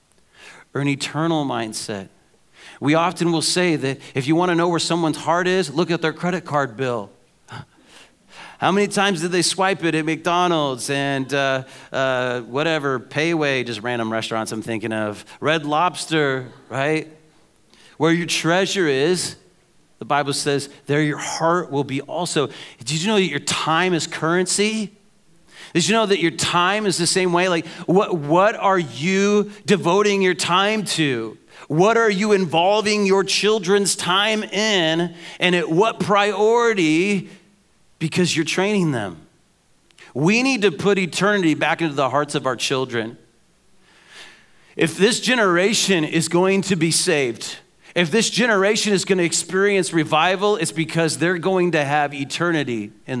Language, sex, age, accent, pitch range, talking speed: English, male, 40-59, American, 145-190 Hz, 155 wpm